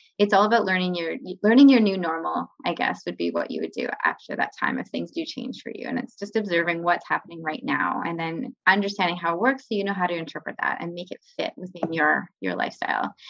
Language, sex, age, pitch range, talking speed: English, female, 20-39, 170-215 Hz, 250 wpm